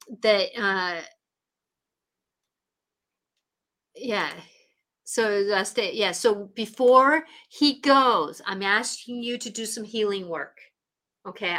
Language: English